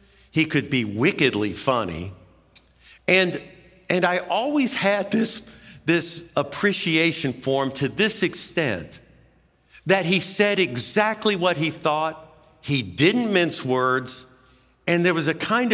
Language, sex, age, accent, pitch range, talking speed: English, male, 50-69, American, 125-180 Hz, 130 wpm